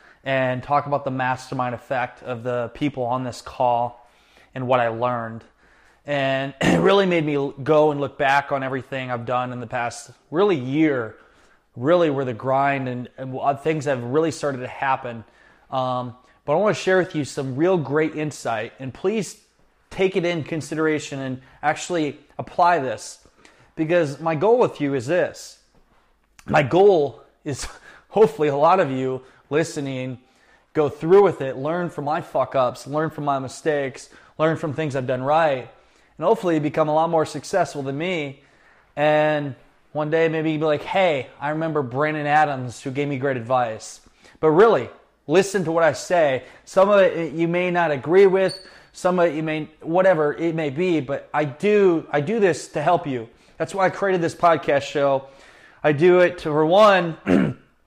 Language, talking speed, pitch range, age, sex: English, 185 wpm, 130-165 Hz, 20-39, male